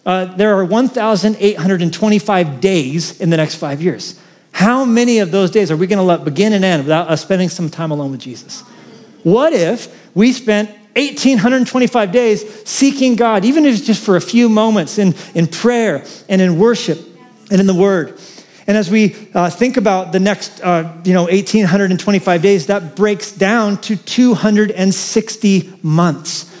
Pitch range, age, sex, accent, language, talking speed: 170-215 Hz, 40-59, male, American, English, 170 wpm